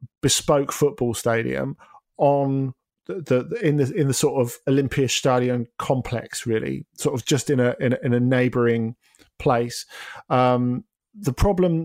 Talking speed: 150 wpm